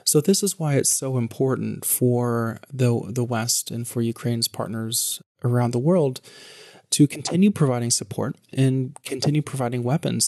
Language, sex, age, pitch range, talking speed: English, male, 30-49, 120-140 Hz, 150 wpm